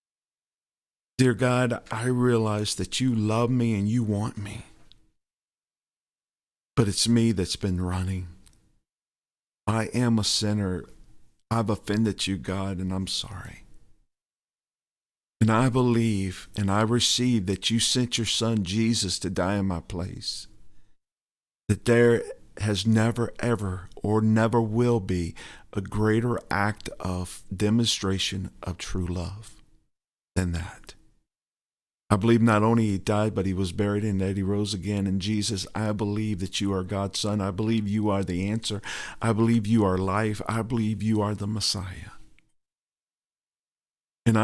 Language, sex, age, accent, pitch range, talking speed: English, male, 50-69, American, 95-115 Hz, 145 wpm